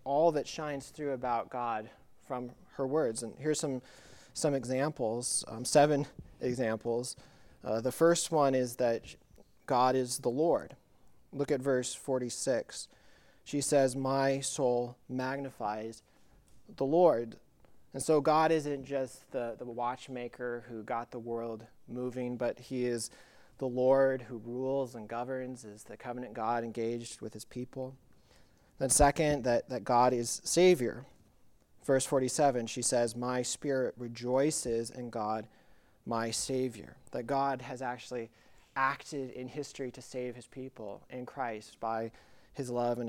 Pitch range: 120-135 Hz